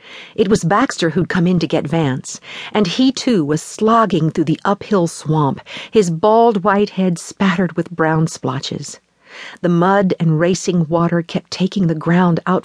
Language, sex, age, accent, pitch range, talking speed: English, female, 50-69, American, 160-210 Hz, 170 wpm